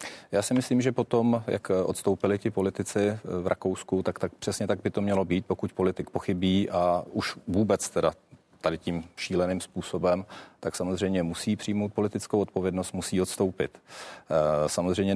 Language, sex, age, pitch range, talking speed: Czech, male, 40-59, 90-105 Hz, 155 wpm